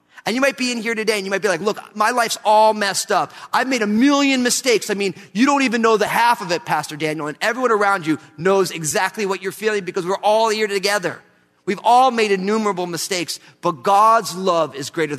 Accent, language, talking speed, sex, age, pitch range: American, English, 235 wpm, male, 30-49, 175-230 Hz